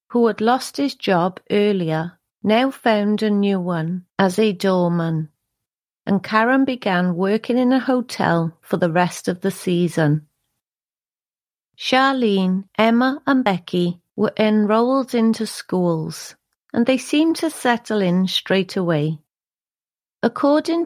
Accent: British